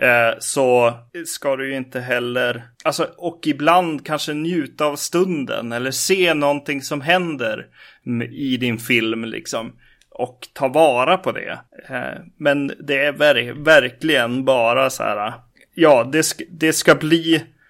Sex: male